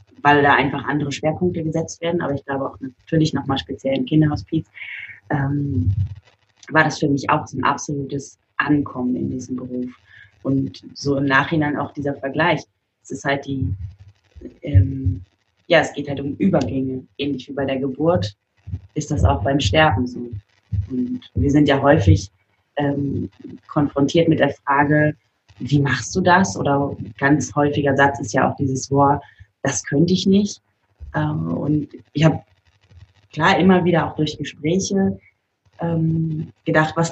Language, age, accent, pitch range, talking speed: German, 20-39, German, 100-150 Hz, 155 wpm